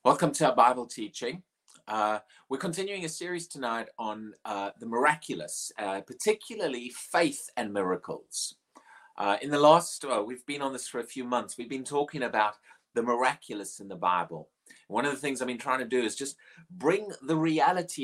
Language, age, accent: English, 30-49, British